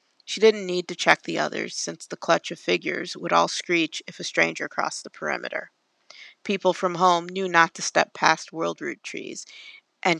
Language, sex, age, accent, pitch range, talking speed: English, female, 40-59, American, 160-190 Hz, 195 wpm